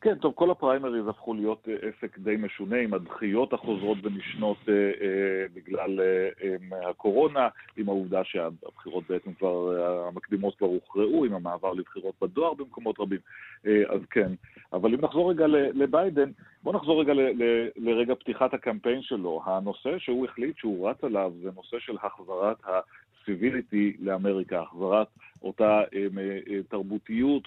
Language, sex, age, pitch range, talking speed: Hebrew, male, 40-59, 100-130 Hz, 140 wpm